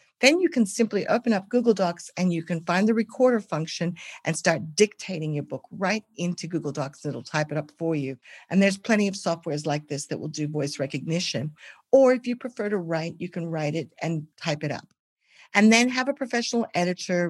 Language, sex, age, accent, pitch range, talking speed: English, female, 50-69, American, 150-200 Hz, 215 wpm